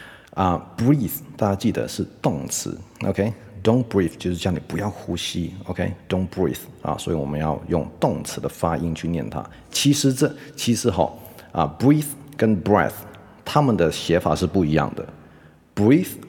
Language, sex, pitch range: Chinese, male, 80-110 Hz